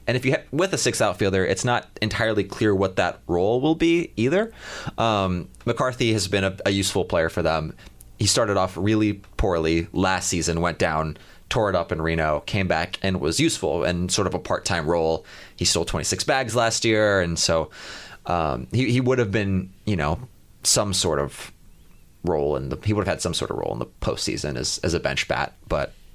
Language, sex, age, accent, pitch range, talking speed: English, male, 30-49, American, 90-115 Hz, 210 wpm